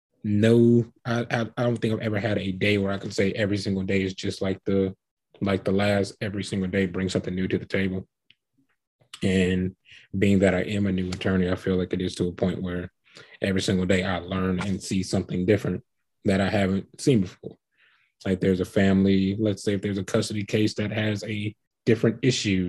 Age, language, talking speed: 20-39, English, 210 wpm